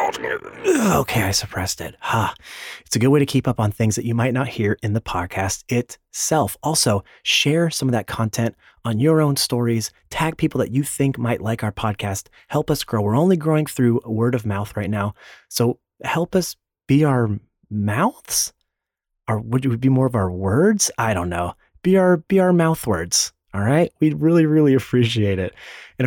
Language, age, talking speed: English, 30-49, 200 wpm